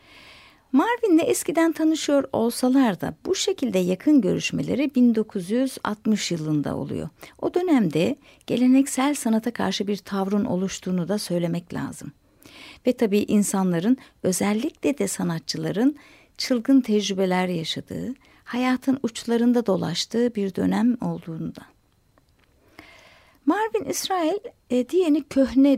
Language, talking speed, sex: Turkish, 100 wpm, female